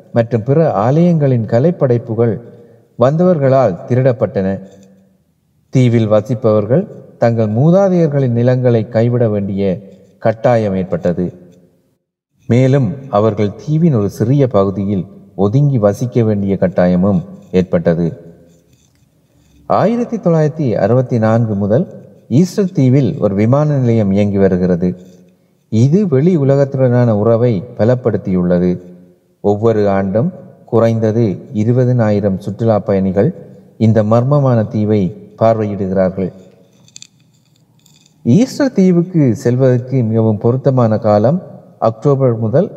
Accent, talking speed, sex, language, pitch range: native, 85 wpm, male, Tamil, 100-140 Hz